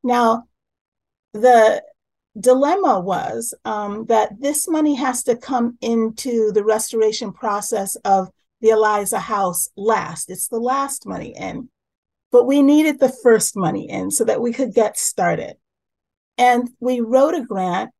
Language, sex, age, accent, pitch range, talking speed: English, female, 40-59, American, 195-255 Hz, 145 wpm